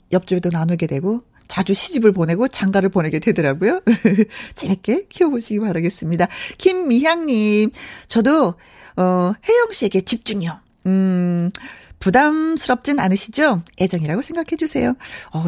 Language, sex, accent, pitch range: Korean, female, native, 185-265 Hz